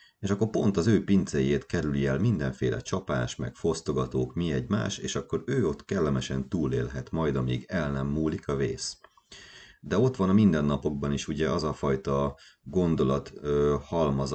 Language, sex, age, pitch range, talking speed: Hungarian, male, 30-49, 65-85 Hz, 165 wpm